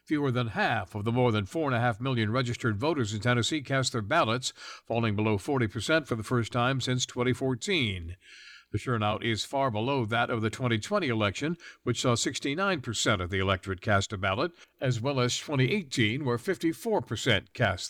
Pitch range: 110-145 Hz